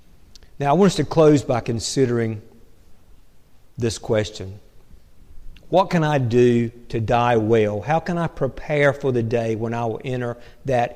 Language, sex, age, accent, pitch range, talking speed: English, male, 50-69, American, 115-150 Hz, 160 wpm